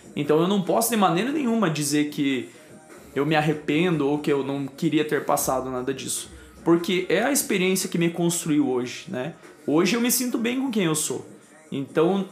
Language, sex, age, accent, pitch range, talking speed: Portuguese, male, 20-39, Brazilian, 150-190 Hz, 195 wpm